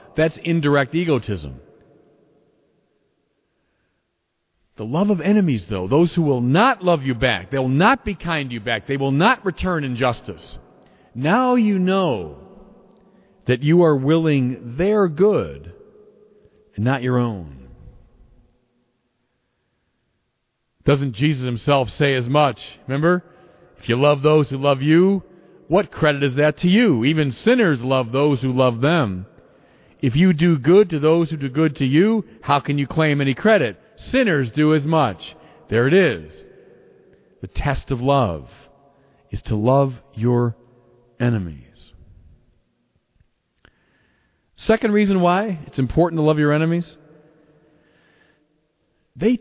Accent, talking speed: American, 135 wpm